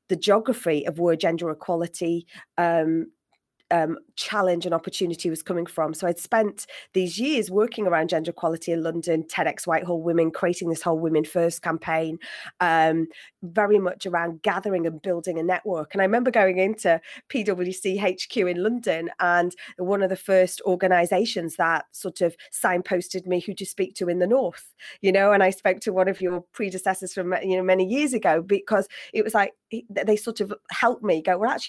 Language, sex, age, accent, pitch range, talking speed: English, female, 30-49, British, 170-200 Hz, 185 wpm